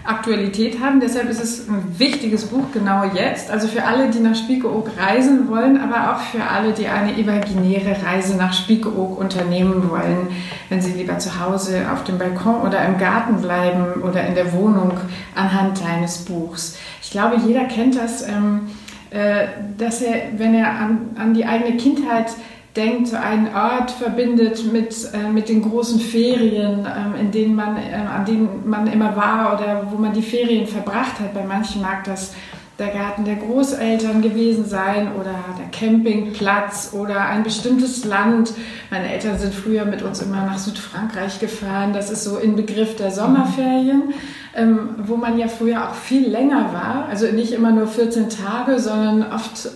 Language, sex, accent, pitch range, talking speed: German, female, German, 200-230 Hz, 170 wpm